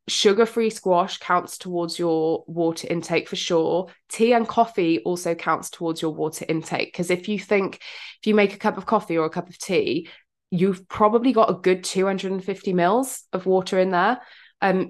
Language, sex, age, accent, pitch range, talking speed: English, female, 20-39, British, 165-200 Hz, 185 wpm